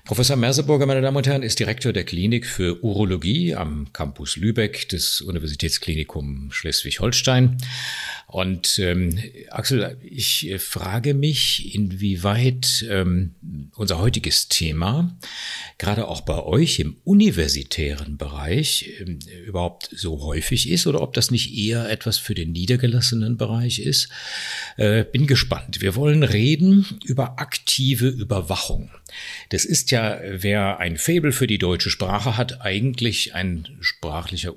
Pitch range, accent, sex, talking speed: 85-120 Hz, German, male, 130 wpm